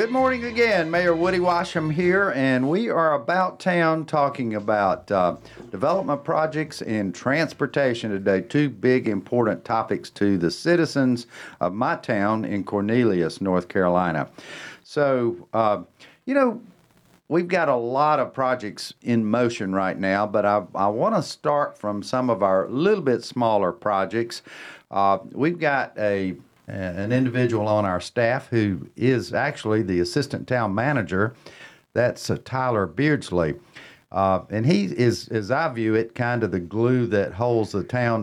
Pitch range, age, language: 95-135 Hz, 50-69, English